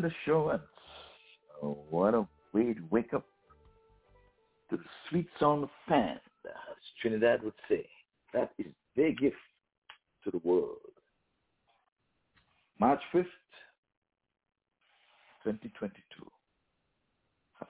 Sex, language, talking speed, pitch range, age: male, English, 100 wpm, 85-115 Hz, 60-79